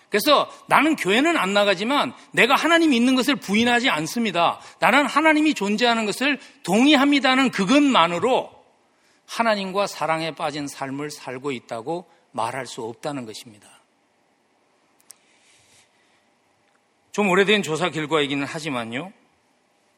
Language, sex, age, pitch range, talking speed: English, male, 40-59, 150-245 Hz, 95 wpm